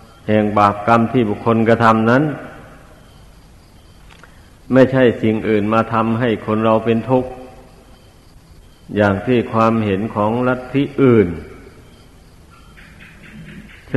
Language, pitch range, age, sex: Thai, 105-120 Hz, 60-79, male